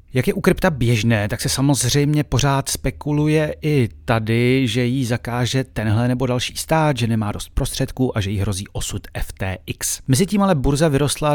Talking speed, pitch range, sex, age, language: 170 wpm, 115-150 Hz, male, 40-59, Czech